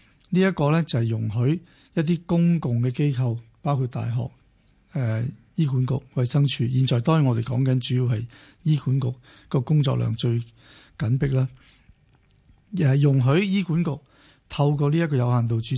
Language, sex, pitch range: Chinese, male, 125-155 Hz